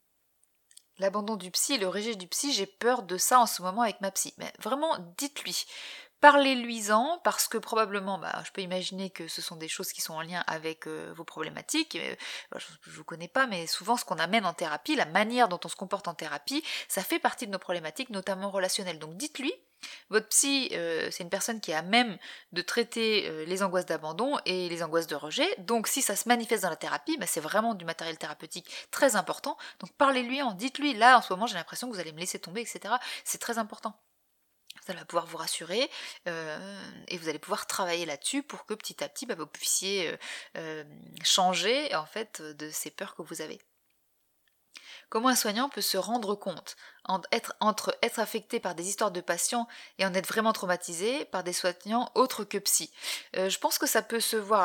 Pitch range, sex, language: 170-230 Hz, female, French